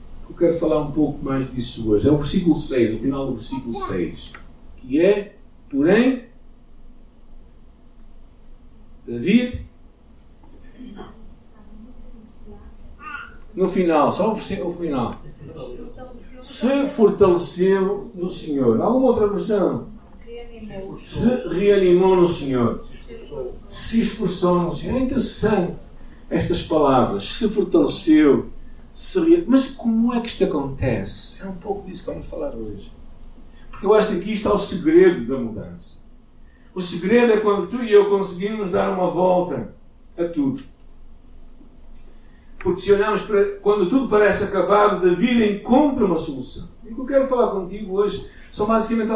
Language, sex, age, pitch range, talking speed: Portuguese, male, 50-69, 160-220 Hz, 130 wpm